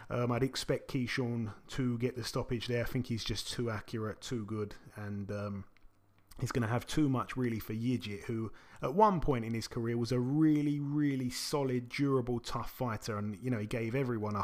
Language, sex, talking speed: English, male, 210 wpm